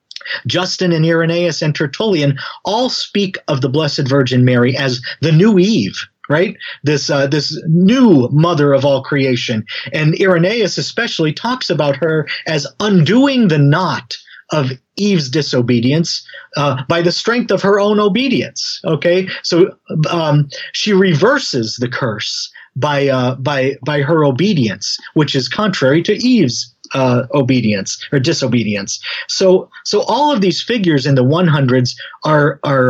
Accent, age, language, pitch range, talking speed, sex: American, 40-59, English, 135-180 Hz, 145 wpm, male